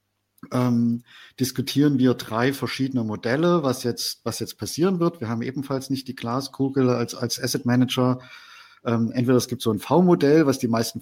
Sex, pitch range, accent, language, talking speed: male, 115-130 Hz, German, German, 170 wpm